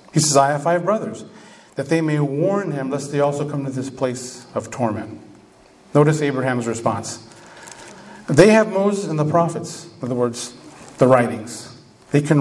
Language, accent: English, American